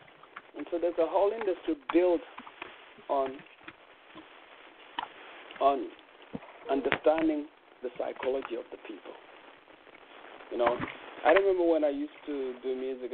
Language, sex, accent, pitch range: English, male, South African, 135-185 Hz